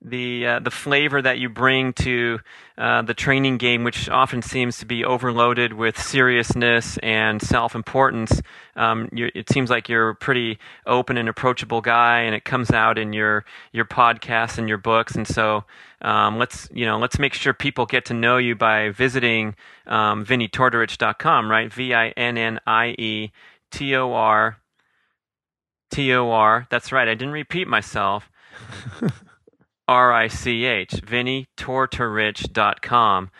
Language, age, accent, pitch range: English, 30-49, American, 110-125 Hz